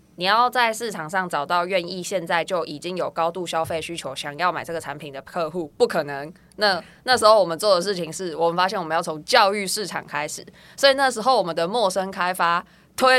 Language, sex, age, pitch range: Chinese, female, 20-39, 155-190 Hz